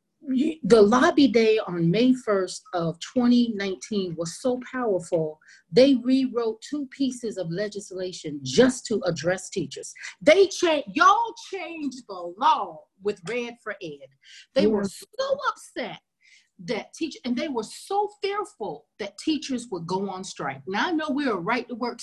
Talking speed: 155 wpm